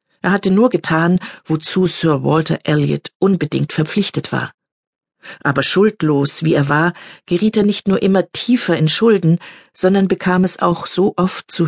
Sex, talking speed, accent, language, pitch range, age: female, 160 wpm, German, German, 150-190 Hz, 50-69